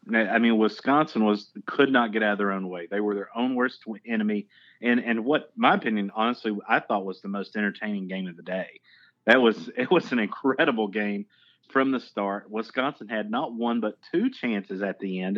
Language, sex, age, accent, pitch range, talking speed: English, male, 30-49, American, 100-120 Hz, 210 wpm